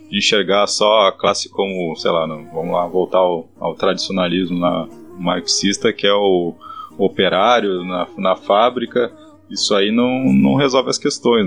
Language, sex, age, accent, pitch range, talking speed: Portuguese, male, 20-39, Brazilian, 95-125 Hz, 160 wpm